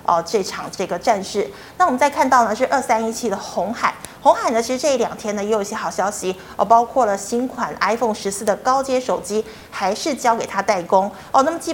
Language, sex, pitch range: Chinese, female, 200-260 Hz